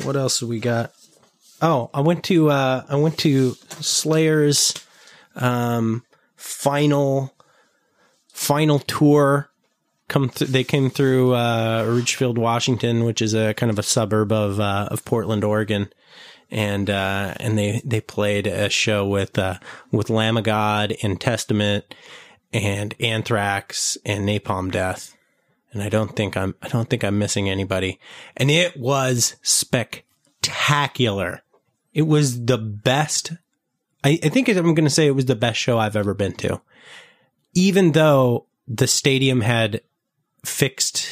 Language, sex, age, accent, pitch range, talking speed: English, male, 30-49, American, 105-140 Hz, 145 wpm